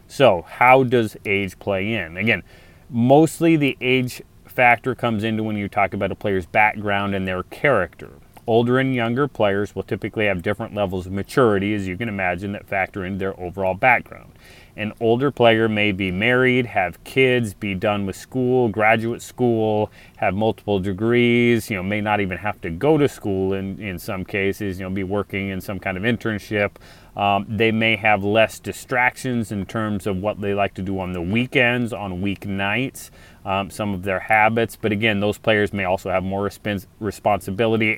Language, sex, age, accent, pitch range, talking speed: English, male, 30-49, American, 95-115 Hz, 185 wpm